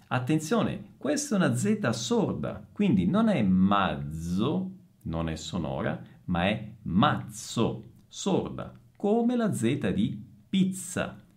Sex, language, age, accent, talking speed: male, Italian, 50-69, native, 115 wpm